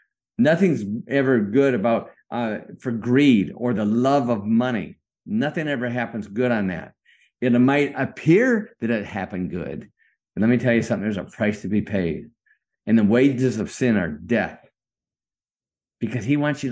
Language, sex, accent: English, male, American